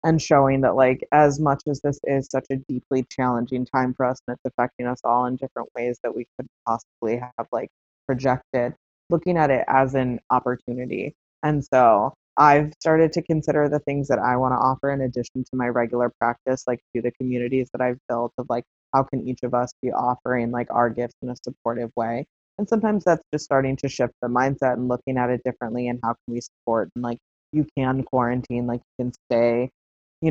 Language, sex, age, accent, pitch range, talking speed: English, female, 20-39, American, 120-135 Hz, 215 wpm